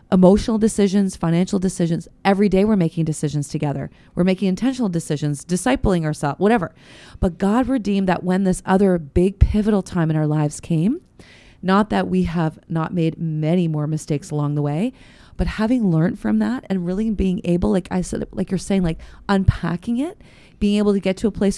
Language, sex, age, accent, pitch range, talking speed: English, female, 30-49, American, 165-200 Hz, 190 wpm